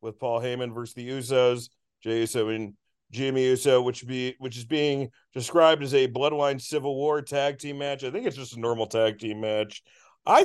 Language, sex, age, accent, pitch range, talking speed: English, male, 40-59, American, 115-160 Hz, 200 wpm